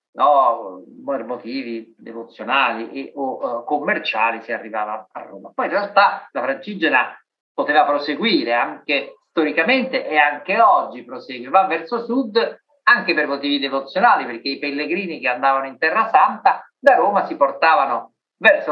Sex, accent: male, native